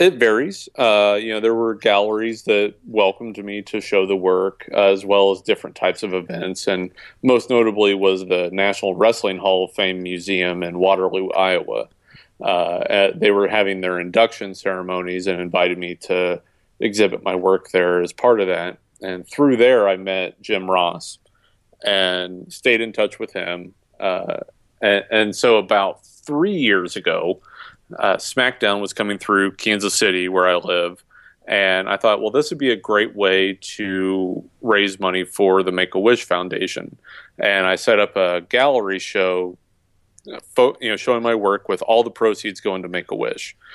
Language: English